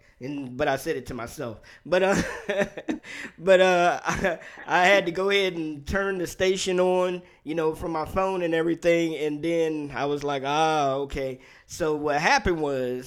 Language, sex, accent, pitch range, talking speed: English, male, American, 135-160 Hz, 185 wpm